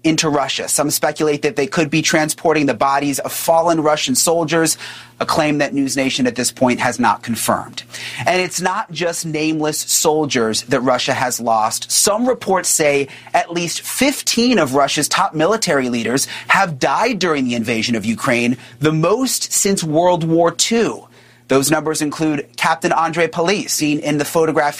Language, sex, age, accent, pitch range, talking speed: English, male, 30-49, American, 145-190 Hz, 170 wpm